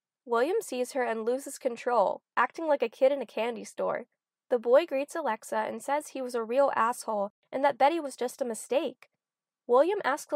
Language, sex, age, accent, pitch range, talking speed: English, female, 20-39, American, 215-280 Hz, 195 wpm